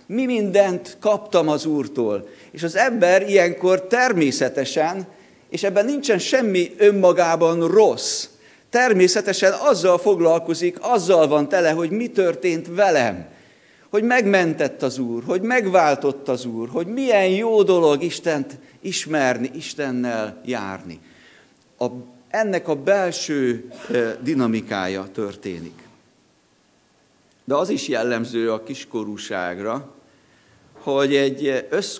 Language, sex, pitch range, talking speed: Hungarian, male, 120-185 Hz, 105 wpm